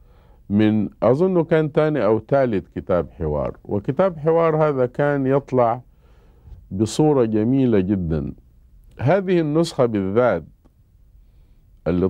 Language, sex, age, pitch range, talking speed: Arabic, male, 50-69, 85-125 Hz, 100 wpm